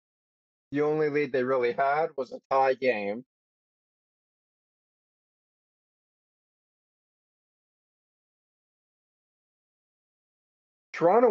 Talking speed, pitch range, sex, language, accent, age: 60 wpm, 135-180 Hz, male, English, American, 30-49